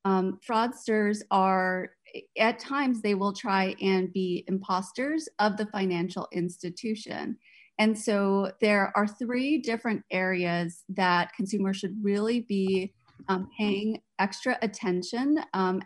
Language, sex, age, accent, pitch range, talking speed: English, female, 30-49, American, 185-225 Hz, 120 wpm